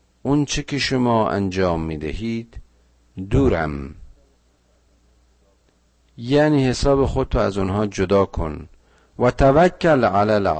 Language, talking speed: Persian, 110 wpm